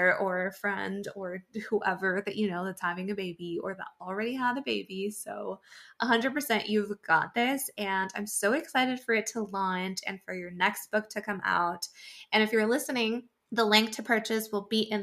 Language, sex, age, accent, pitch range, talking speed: English, female, 20-39, American, 195-250 Hz, 200 wpm